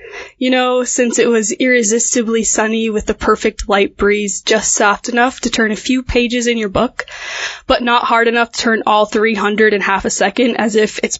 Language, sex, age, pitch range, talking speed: English, female, 10-29, 210-245 Hz, 205 wpm